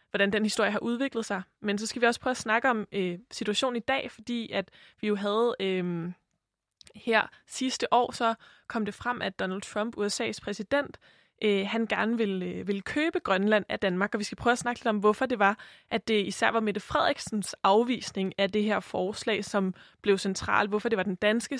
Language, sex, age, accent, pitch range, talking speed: Danish, female, 20-39, native, 195-230 Hz, 215 wpm